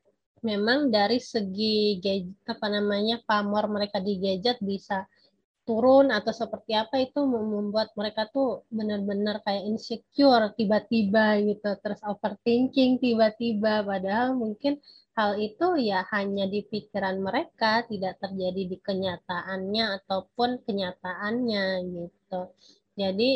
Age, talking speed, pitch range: 20-39, 110 wpm, 195-230 Hz